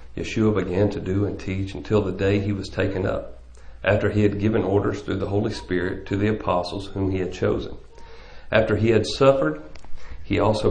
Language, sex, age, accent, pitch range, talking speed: English, male, 40-59, American, 85-105 Hz, 195 wpm